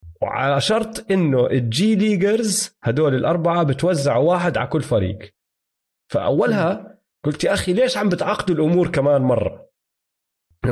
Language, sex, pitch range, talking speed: Arabic, male, 130-180 Hz, 130 wpm